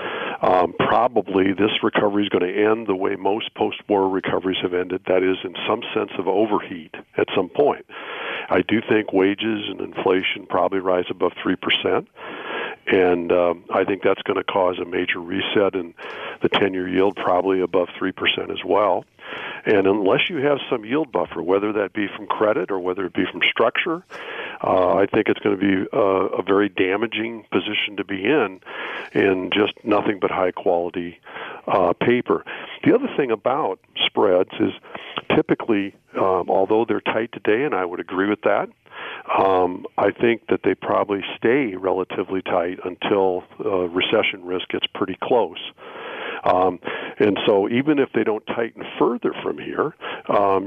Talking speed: 165 wpm